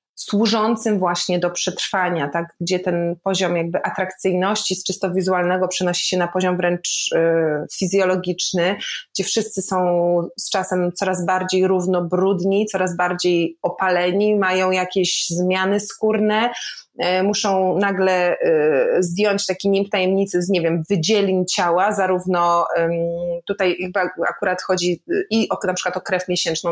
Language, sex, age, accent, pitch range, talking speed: Polish, female, 20-39, native, 175-205 Hz, 125 wpm